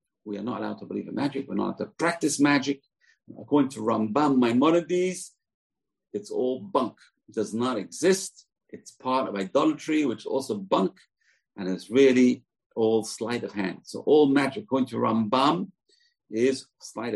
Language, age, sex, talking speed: English, 50-69, male, 170 wpm